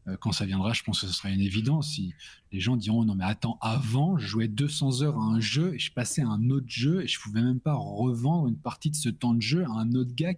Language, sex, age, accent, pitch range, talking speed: French, male, 20-39, French, 100-135 Hz, 285 wpm